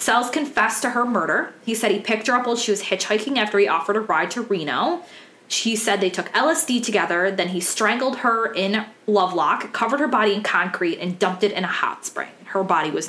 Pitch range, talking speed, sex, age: 185-240 Hz, 225 wpm, female, 20-39